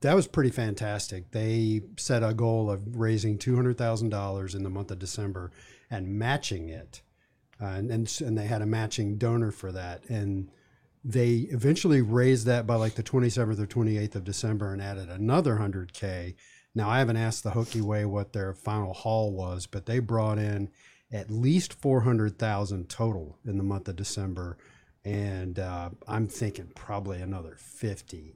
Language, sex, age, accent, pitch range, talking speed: English, male, 40-59, American, 100-115 Hz, 165 wpm